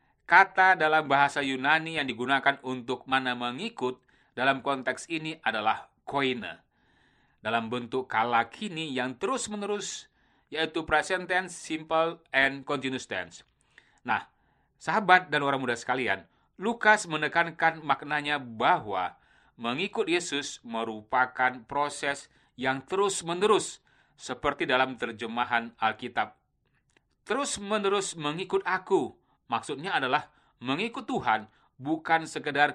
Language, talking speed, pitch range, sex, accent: Indonesian, 110 wpm, 125-160 Hz, male, native